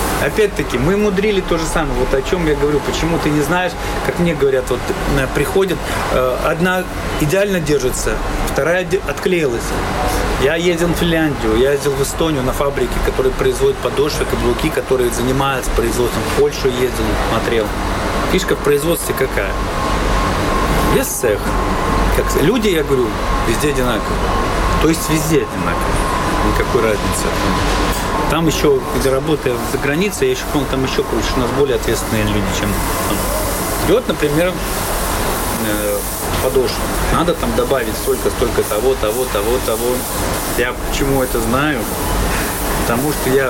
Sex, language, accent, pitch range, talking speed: male, Russian, native, 125-175 Hz, 130 wpm